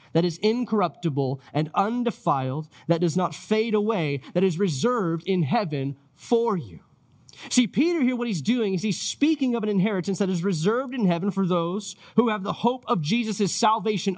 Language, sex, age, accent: English, male, 30-49, American